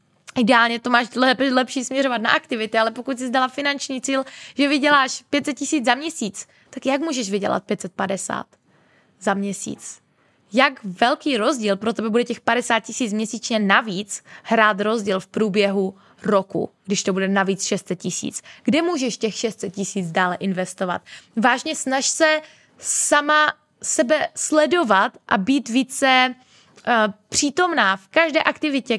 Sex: female